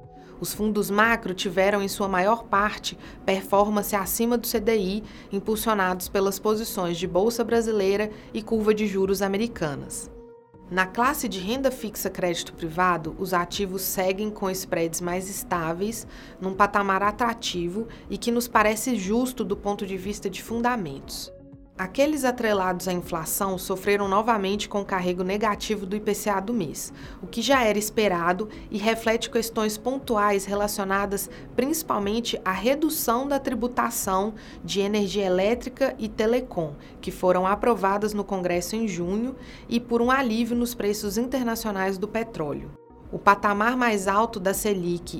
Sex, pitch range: female, 190-230 Hz